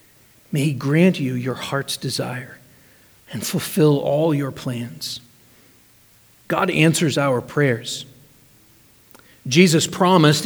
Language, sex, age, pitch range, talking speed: English, male, 40-59, 145-200 Hz, 105 wpm